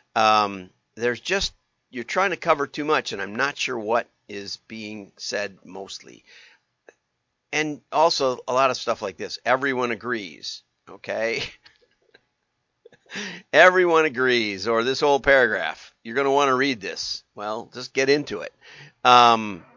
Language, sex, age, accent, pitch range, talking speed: English, male, 50-69, American, 115-145 Hz, 145 wpm